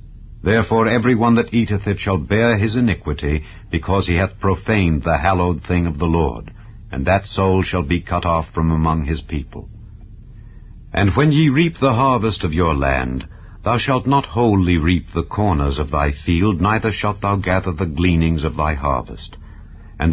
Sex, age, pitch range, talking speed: male, 70-89, 80-110 Hz, 180 wpm